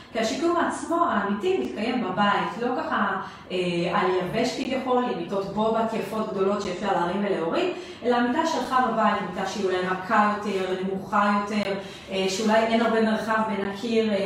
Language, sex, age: English, female, 30-49